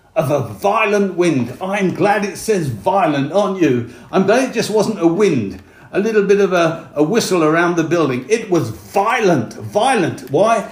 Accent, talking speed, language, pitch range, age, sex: British, 185 wpm, English, 170-215 Hz, 50-69, male